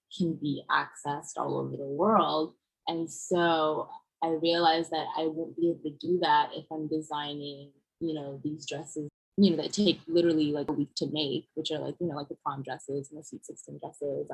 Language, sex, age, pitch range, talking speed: English, female, 20-39, 145-170 Hz, 210 wpm